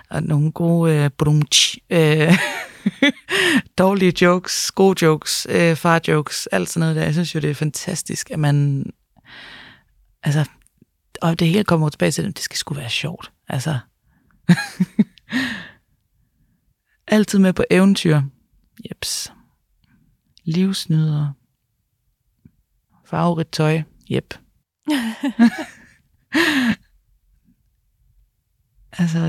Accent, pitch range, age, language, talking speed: native, 155-185 Hz, 30-49, Danish, 100 wpm